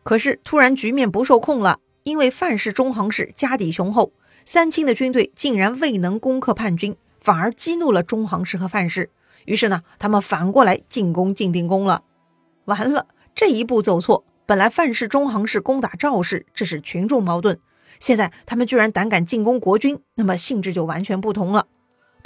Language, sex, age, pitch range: Chinese, female, 30-49, 185-245 Hz